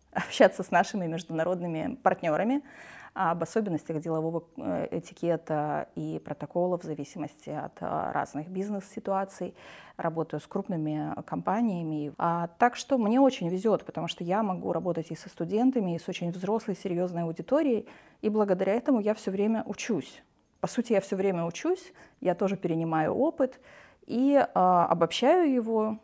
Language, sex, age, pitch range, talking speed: Russian, female, 30-49, 170-235 Hz, 135 wpm